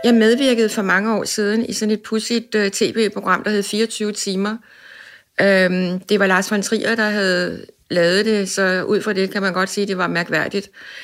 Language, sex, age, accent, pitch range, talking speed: Danish, female, 60-79, native, 195-240 Hz, 195 wpm